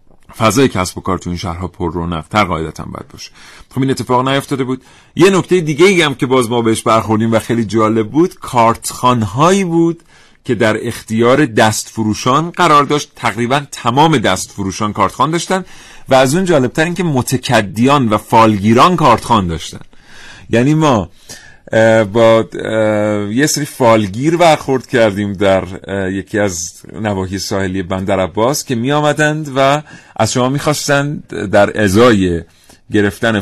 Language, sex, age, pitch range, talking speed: Persian, male, 40-59, 95-130 Hz, 145 wpm